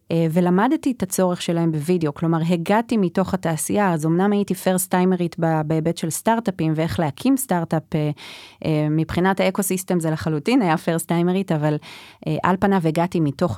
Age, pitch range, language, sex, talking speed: 30-49, 170-220 Hz, Hebrew, female, 135 wpm